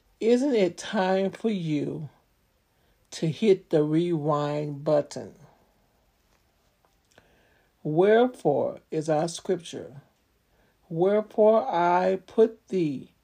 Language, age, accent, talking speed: English, 60-79, American, 80 wpm